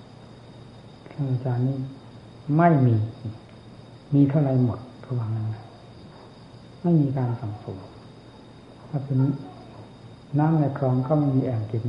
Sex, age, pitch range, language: male, 60-79, 115-135 Hz, Thai